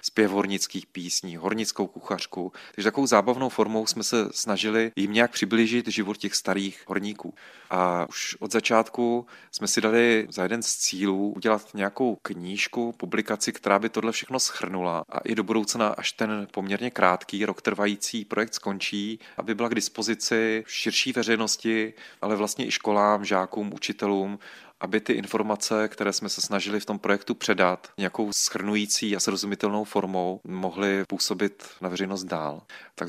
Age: 30-49